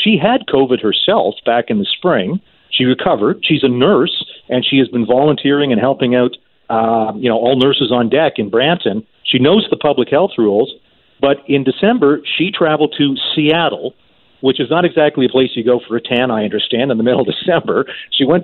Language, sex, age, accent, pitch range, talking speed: English, male, 40-59, American, 115-145 Hz, 205 wpm